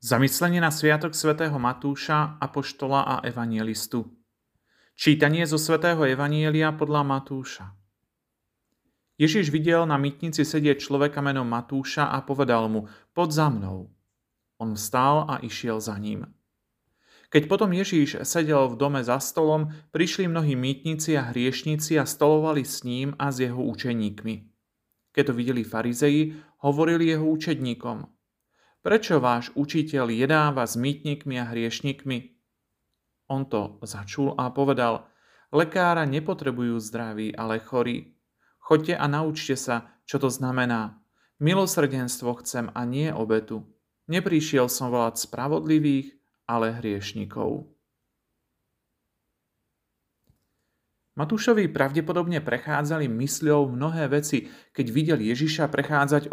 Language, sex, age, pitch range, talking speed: Slovak, male, 40-59, 120-155 Hz, 115 wpm